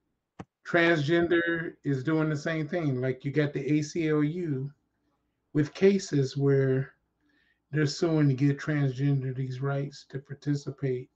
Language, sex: English, male